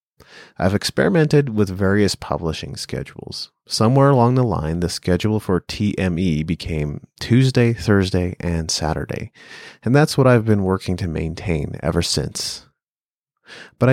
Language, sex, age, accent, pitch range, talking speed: English, male, 30-49, American, 85-115 Hz, 130 wpm